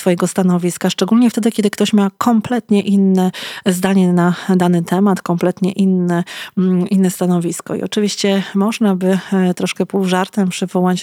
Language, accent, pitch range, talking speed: Polish, native, 185-205 Hz, 135 wpm